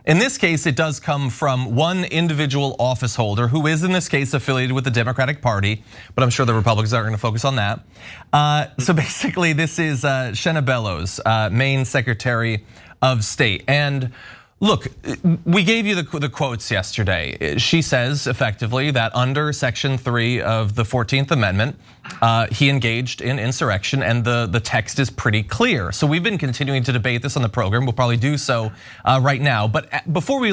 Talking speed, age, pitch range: 180 wpm, 30-49, 120-160 Hz